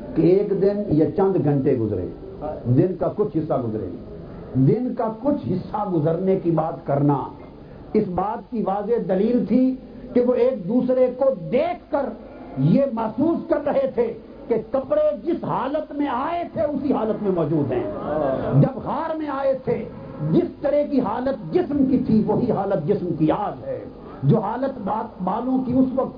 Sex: male